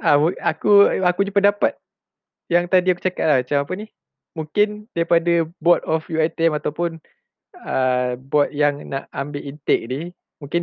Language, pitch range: Malay, 140-185 Hz